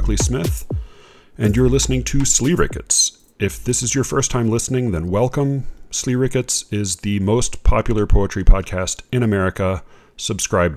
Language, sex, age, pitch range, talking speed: English, male, 30-49, 95-115 Hz, 150 wpm